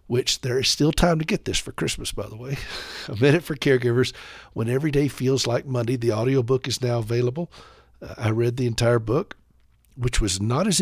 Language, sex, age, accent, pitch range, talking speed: English, male, 60-79, American, 115-150 Hz, 210 wpm